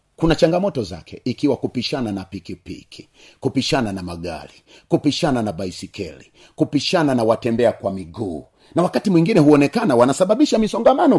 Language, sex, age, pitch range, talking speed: Swahili, male, 40-59, 105-160 Hz, 135 wpm